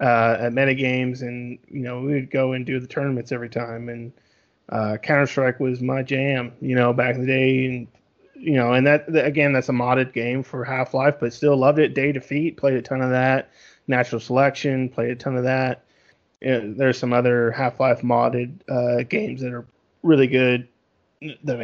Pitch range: 125-145 Hz